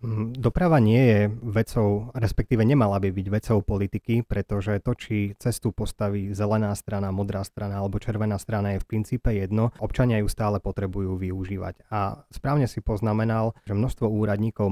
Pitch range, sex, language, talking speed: 100-110 Hz, male, Slovak, 155 wpm